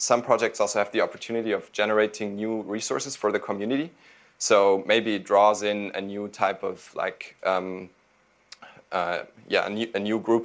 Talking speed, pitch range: 180 wpm, 95-110 Hz